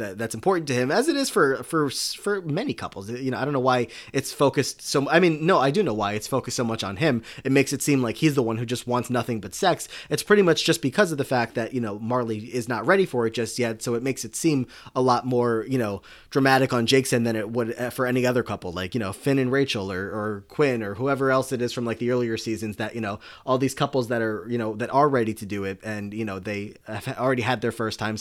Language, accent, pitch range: English, American, 110-135 Hz